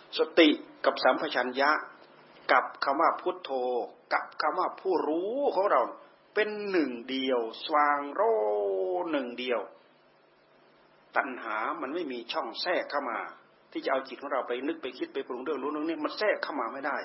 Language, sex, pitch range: Thai, male, 140-190 Hz